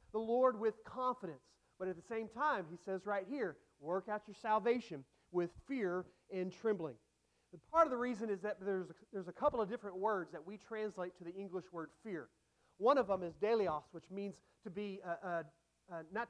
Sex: male